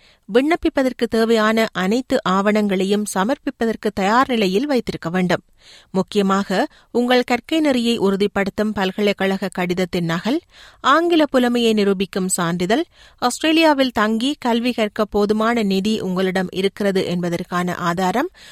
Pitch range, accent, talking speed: 195-255 Hz, native, 95 wpm